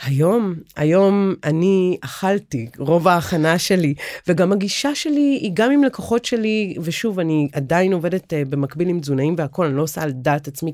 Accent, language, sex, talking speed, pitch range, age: native, Hebrew, female, 170 wpm, 155-220 Hz, 30-49